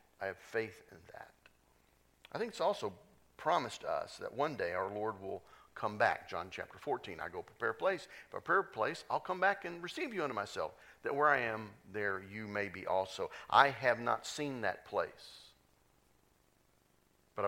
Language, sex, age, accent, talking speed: English, male, 50-69, American, 190 wpm